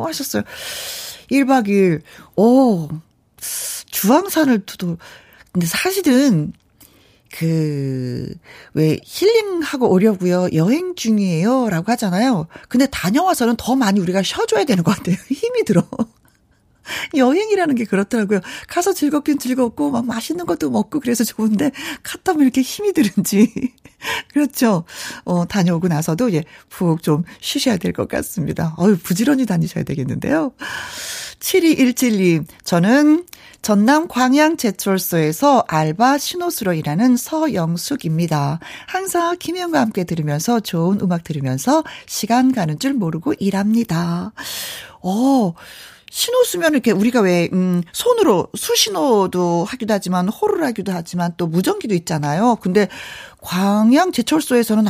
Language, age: Korean, 40-59